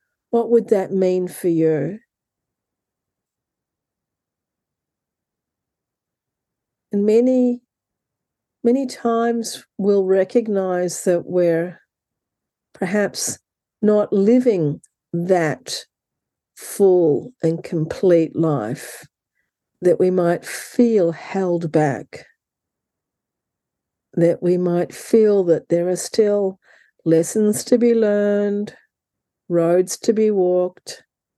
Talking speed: 85 wpm